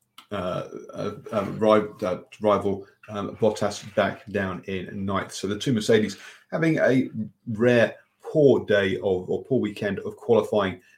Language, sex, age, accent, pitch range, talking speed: English, male, 40-59, British, 100-120 Hz, 150 wpm